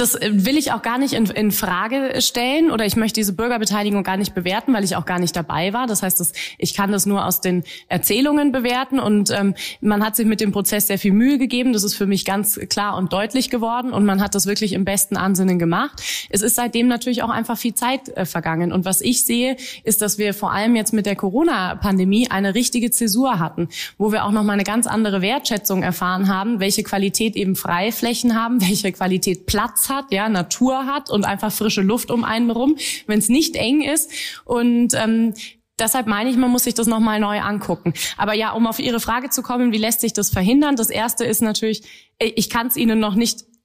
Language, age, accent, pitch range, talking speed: German, 20-39, German, 200-240 Hz, 225 wpm